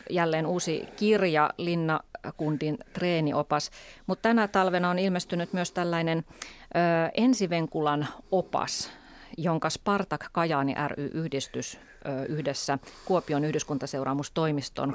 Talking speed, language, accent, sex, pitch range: 90 wpm, Finnish, native, female, 150-175 Hz